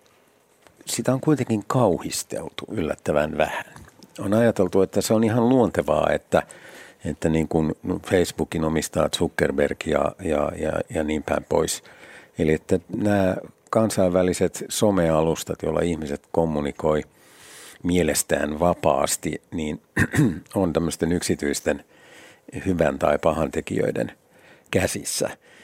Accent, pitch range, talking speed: native, 80-100 Hz, 95 wpm